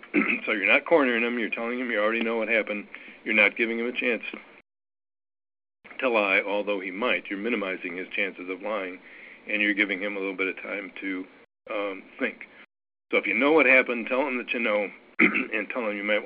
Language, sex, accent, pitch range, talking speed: English, male, American, 100-120 Hz, 215 wpm